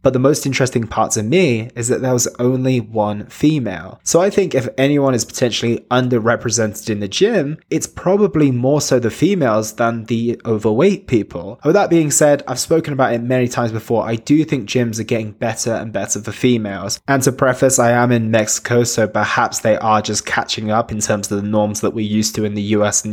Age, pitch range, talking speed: 20-39, 115-150 Hz, 220 wpm